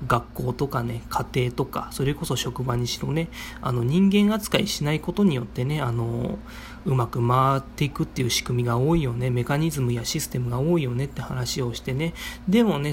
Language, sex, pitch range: Japanese, male, 120-160 Hz